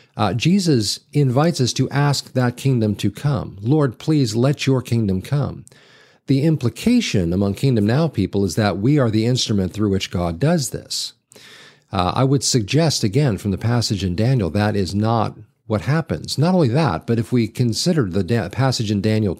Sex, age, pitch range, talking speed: male, 50-69, 100-135 Hz, 180 wpm